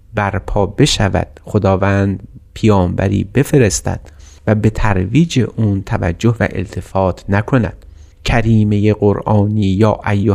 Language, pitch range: Persian, 95-115 Hz